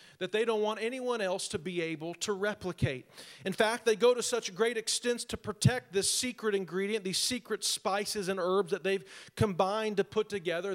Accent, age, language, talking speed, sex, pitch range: American, 40-59, English, 195 wpm, male, 195-240 Hz